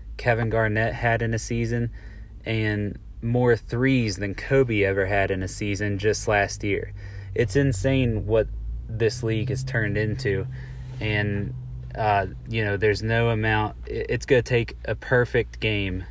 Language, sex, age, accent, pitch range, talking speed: English, male, 20-39, American, 100-115 Hz, 155 wpm